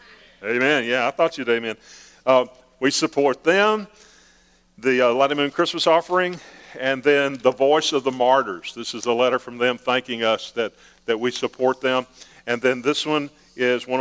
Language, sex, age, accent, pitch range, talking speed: English, male, 50-69, American, 120-145 Hz, 180 wpm